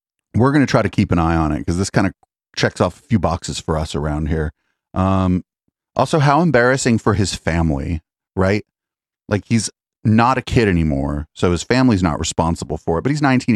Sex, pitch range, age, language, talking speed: male, 80-105 Hz, 30-49, English, 210 wpm